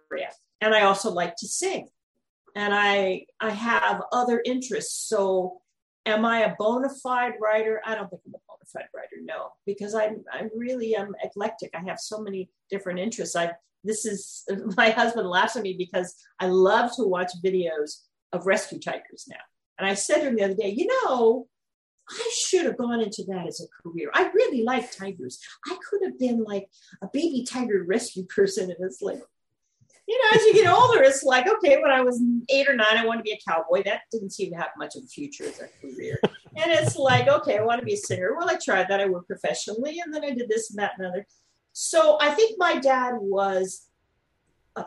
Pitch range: 195-275 Hz